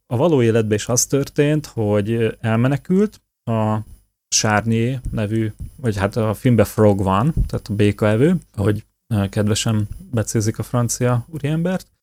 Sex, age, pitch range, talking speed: male, 30-49, 105-120 Hz, 130 wpm